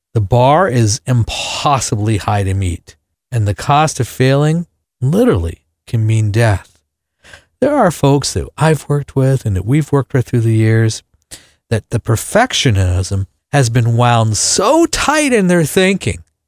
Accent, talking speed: American, 155 wpm